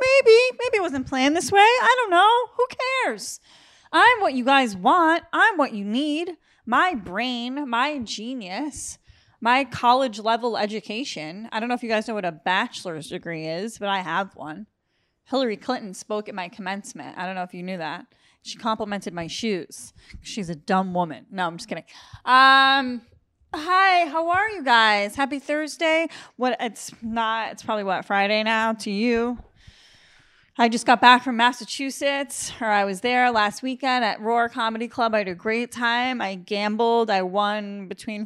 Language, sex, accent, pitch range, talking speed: English, female, American, 195-260 Hz, 180 wpm